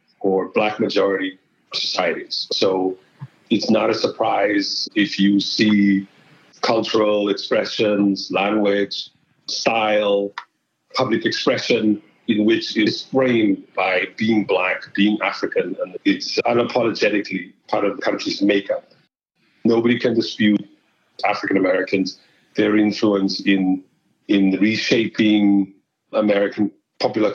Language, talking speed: English, 105 wpm